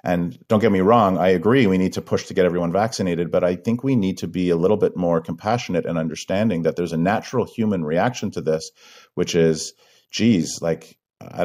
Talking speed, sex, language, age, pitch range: 220 wpm, male, English, 40-59, 80-95 Hz